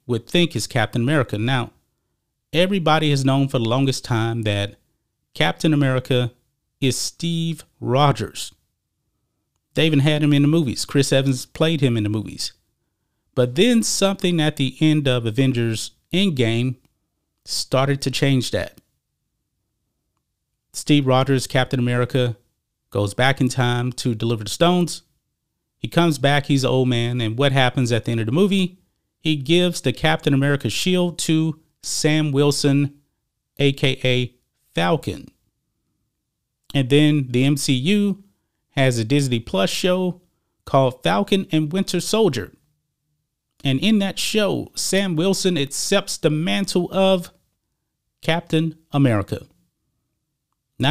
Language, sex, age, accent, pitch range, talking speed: English, male, 30-49, American, 125-160 Hz, 130 wpm